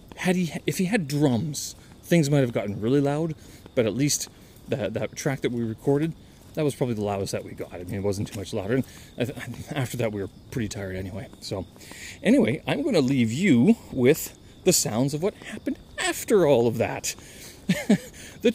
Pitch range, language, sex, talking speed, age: 110-150 Hz, English, male, 195 wpm, 30-49